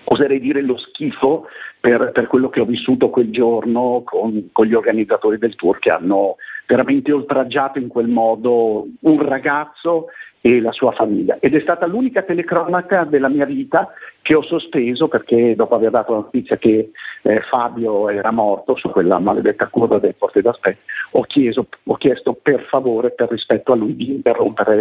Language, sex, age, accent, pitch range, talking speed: Italian, male, 50-69, native, 125-155 Hz, 175 wpm